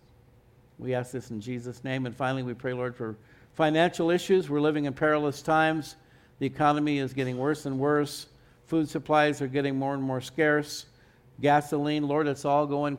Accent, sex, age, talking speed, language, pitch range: American, male, 60-79, 180 wpm, English, 130-155 Hz